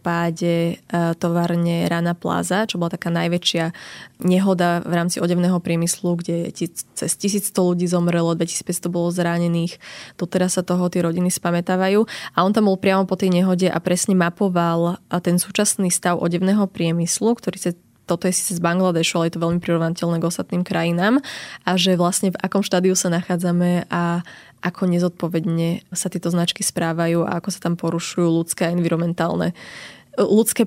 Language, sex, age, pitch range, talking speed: Slovak, female, 20-39, 170-185 Hz, 160 wpm